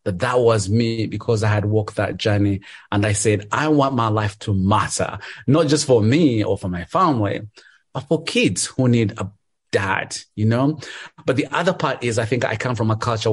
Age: 30-49